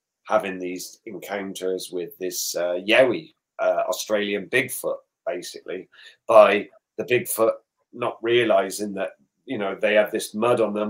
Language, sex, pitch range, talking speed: English, male, 105-130 Hz, 140 wpm